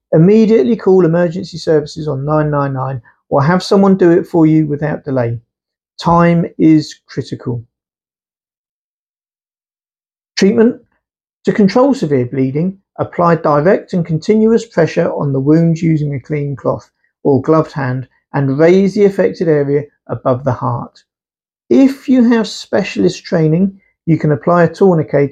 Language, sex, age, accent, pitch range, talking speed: English, male, 50-69, British, 145-185 Hz, 135 wpm